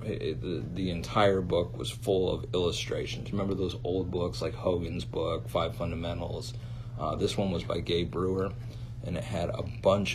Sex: male